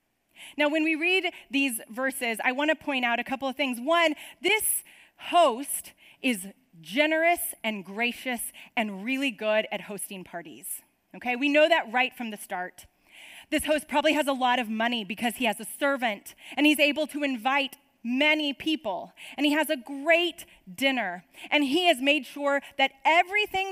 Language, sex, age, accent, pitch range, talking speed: English, female, 30-49, American, 240-315 Hz, 175 wpm